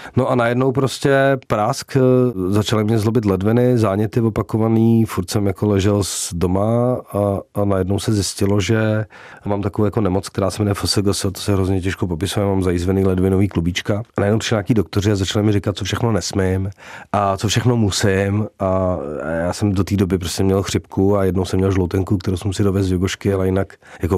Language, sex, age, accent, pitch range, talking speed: Czech, male, 40-59, native, 90-105 Hz, 195 wpm